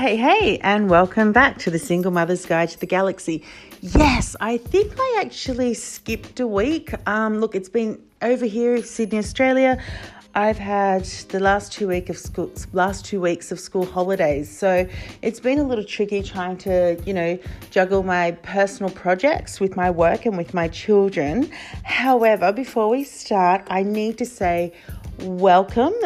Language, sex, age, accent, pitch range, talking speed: English, female, 40-59, Australian, 180-245 Hz, 170 wpm